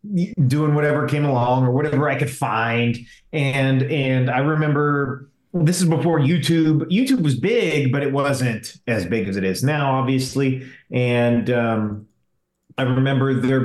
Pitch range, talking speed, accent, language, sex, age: 115-140 Hz, 155 wpm, American, English, male, 30-49